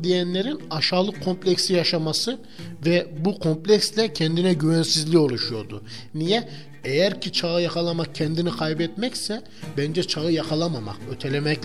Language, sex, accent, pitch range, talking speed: Turkish, male, native, 140-180 Hz, 110 wpm